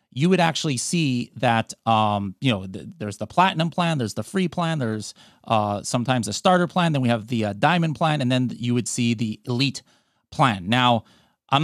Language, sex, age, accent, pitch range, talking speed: English, male, 30-49, American, 115-145 Hz, 205 wpm